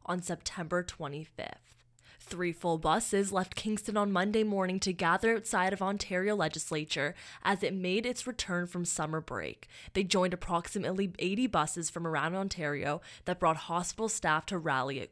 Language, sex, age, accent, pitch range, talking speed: English, female, 20-39, American, 160-200 Hz, 160 wpm